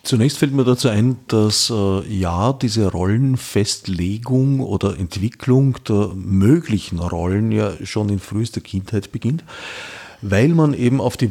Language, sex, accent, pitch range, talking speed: German, male, Austrian, 100-125 Hz, 140 wpm